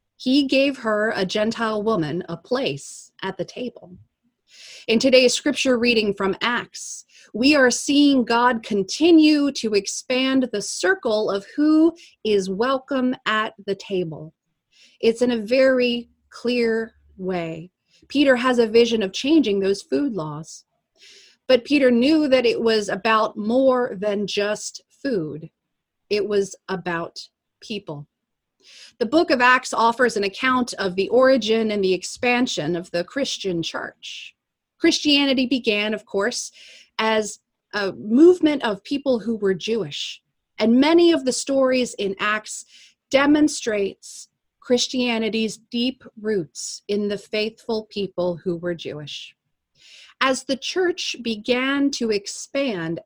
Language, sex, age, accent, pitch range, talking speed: English, female, 30-49, American, 195-255 Hz, 130 wpm